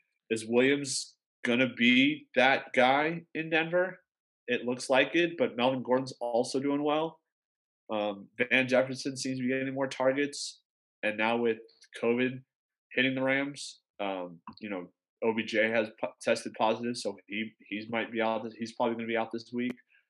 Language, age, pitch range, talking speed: English, 20-39, 110-125 Hz, 165 wpm